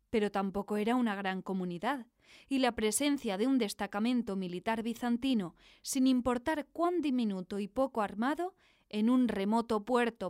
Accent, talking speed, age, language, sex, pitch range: Spanish, 145 wpm, 20-39, Spanish, female, 205-255 Hz